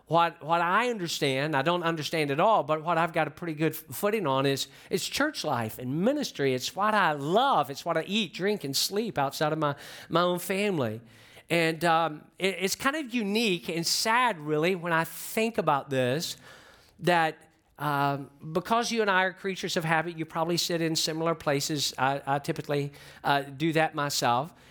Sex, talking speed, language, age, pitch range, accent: male, 190 wpm, English, 50-69, 155-200 Hz, American